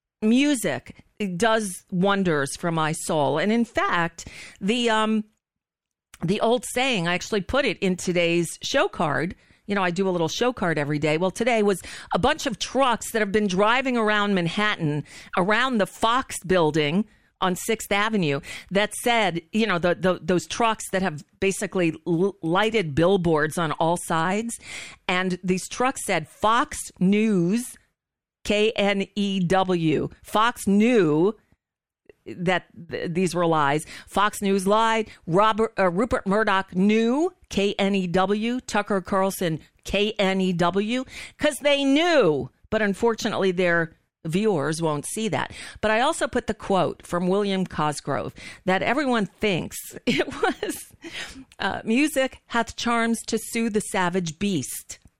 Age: 40-59